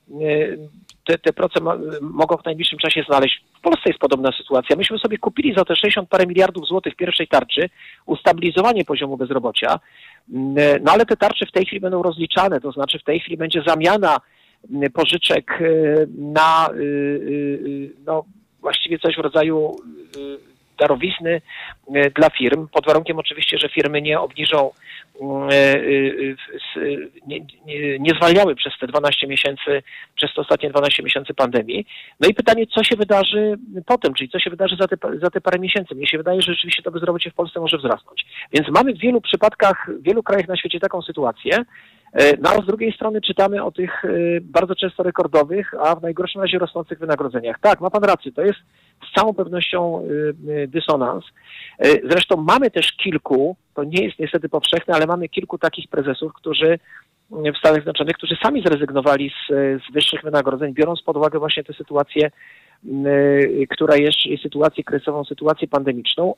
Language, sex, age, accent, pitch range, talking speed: Polish, male, 40-59, native, 145-185 Hz, 160 wpm